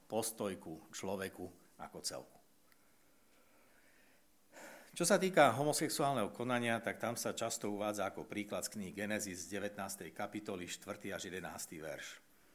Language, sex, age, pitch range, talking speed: Slovak, male, 60-79, 95-115 Hz, 120 wpm